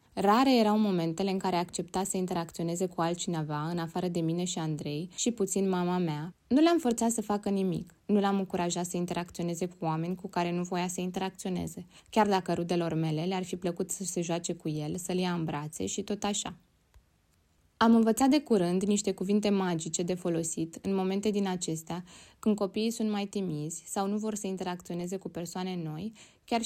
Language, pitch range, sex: Romanian, 175-210 Hz, female